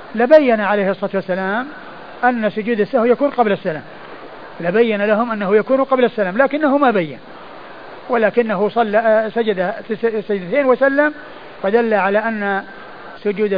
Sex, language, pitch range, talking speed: male, Arabic, 195-230 Hz, 130 wpm